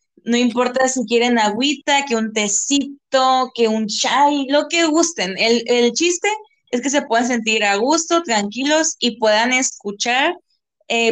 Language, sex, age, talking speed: Spanish, female, 20-39, 155 wpm